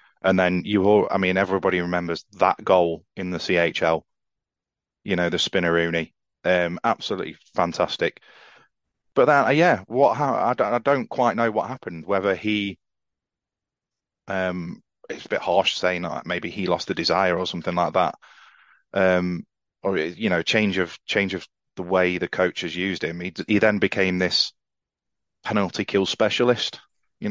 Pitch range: 85-95 Hz